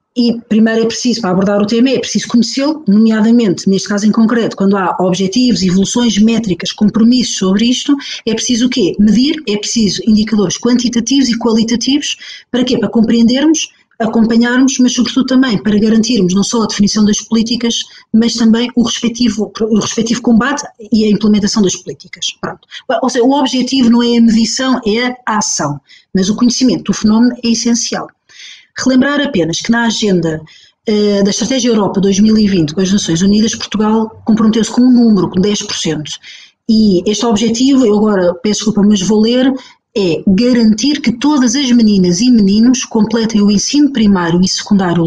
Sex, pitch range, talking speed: female, 205-240 Hz, 165 wpm